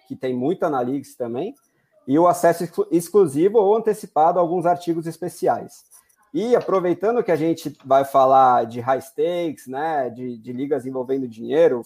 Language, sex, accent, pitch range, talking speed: Portuguese, male, Brazilian, 135-170 Hz, 155 wpm